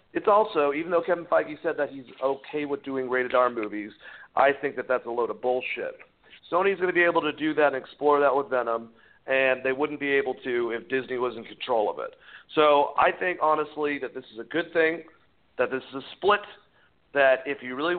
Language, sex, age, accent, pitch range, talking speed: English, male, 40-59, American, 135-170 Hz, 225 wpm